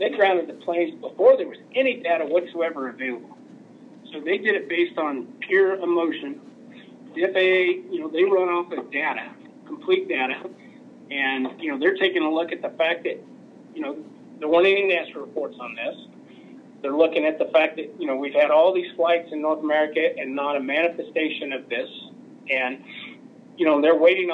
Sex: male